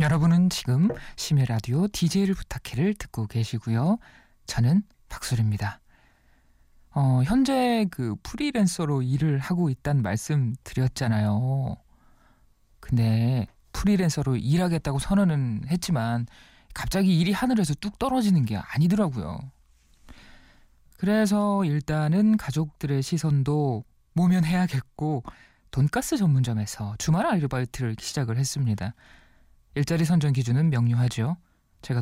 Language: Korean